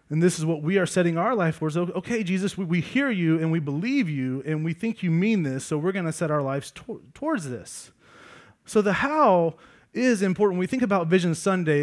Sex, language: male, English